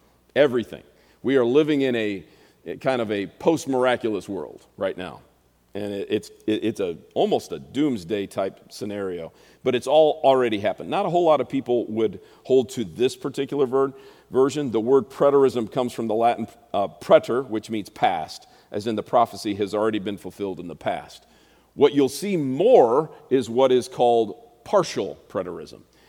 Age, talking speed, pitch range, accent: 40-59, 170 wpm, 105-140 Hz, American